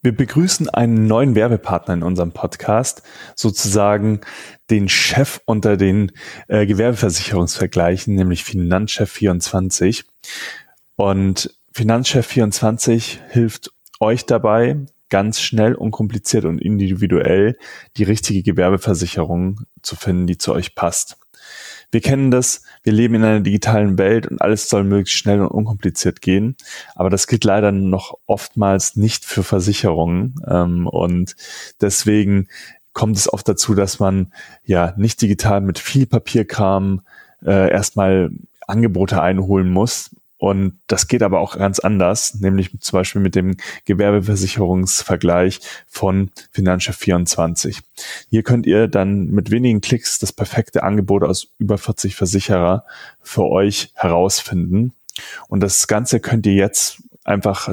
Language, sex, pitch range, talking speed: German, male, 95-110 Hz, 125 wpm